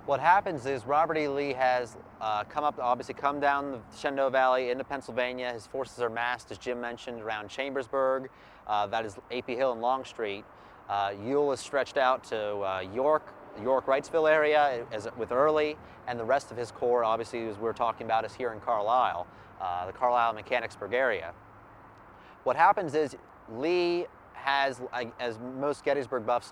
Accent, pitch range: American, 115-140 Hz